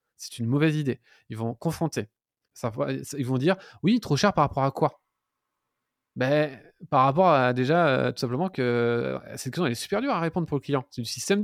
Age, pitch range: 20-39, 125-165 Hz